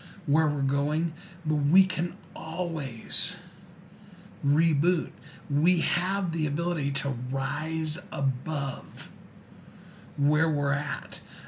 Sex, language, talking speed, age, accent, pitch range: male, English, 95 wpm, 40-59, American, 145-185 Hz